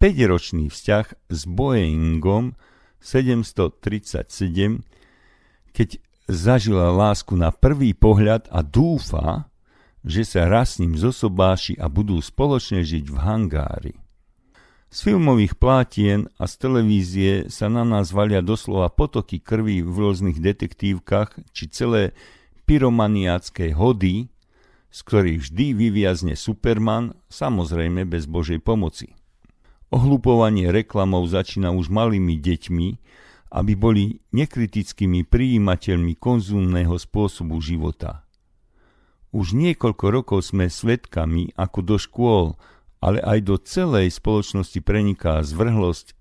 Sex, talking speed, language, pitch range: male, 105 wpm, Slovak, 85-110 Hz